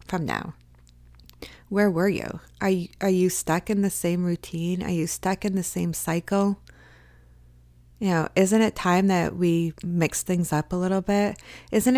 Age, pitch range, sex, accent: 20-39, 115-180 Hz, female, American